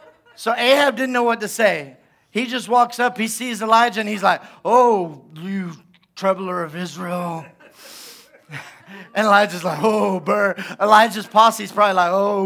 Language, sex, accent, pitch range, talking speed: English, male, American, 185-235 Hz, 160 wpm